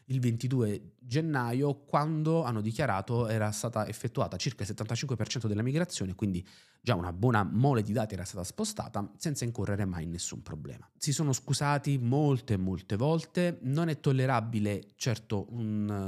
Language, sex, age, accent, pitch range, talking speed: Italian, male, 30-49, native, 100-130 Hz, 155 wpm